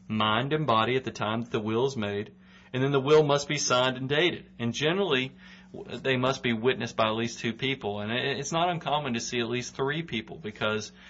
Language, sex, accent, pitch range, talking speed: English, male, American, 105-130 Hz, 225 wpm